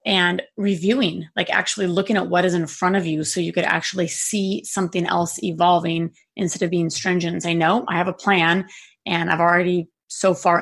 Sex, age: female, 30-49